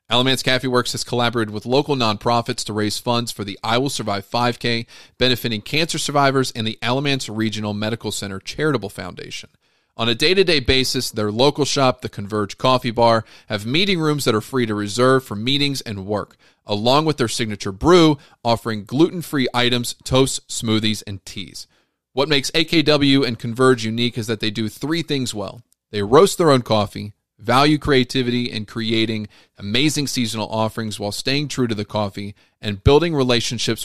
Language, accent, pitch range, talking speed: English, American, 105-130 Hz, 170 wpm